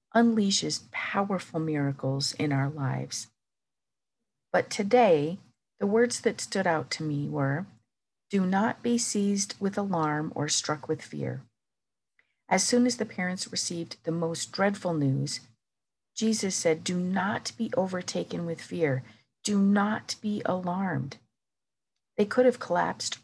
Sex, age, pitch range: female, 50-69, 140-195 Hz